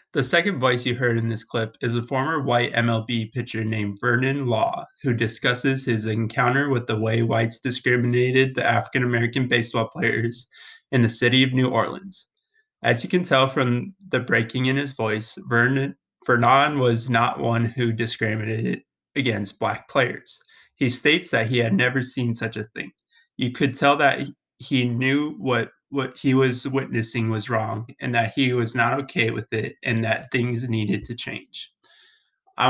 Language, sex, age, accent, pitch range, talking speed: English, male, 30-49, American, 115-135 Hz, 170 wpm